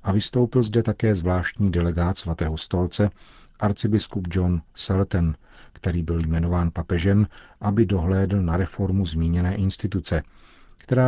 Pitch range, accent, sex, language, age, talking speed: 85-100 Hz, native, male, Czech, 50-69, 120 wpm